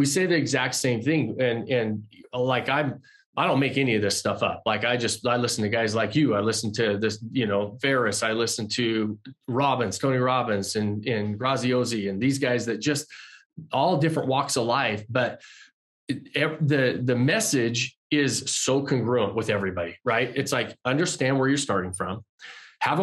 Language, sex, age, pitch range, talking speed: English, male, 20-39, 115-140 Hz, 190 wpm